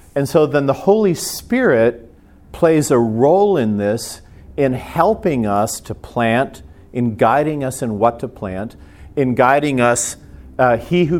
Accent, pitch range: American, 95-135 Hz